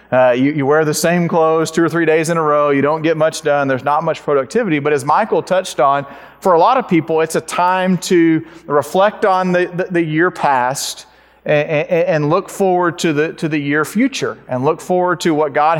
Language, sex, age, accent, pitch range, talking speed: English, male, 40-59, American, 145-165 Hz, 230 wpm